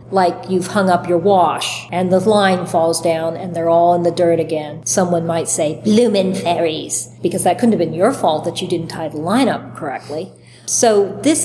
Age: 40-59